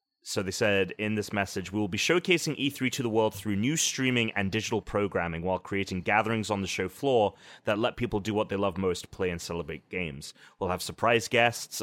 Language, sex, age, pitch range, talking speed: English, male, 30-49, 95-125 Hz, 220 wpm